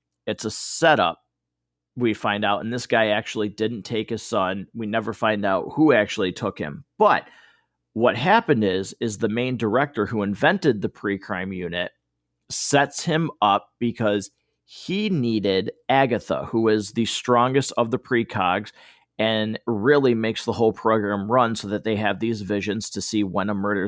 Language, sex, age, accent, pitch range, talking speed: English, male, 40-59, American, 100-125 Hz, 170 wpm